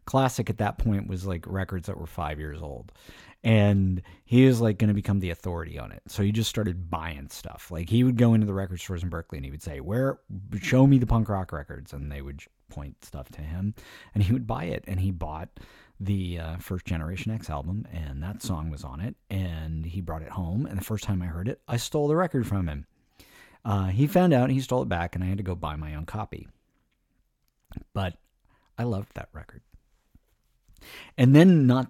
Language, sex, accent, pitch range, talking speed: English, male, American, 85-120 Hz, 230 wpm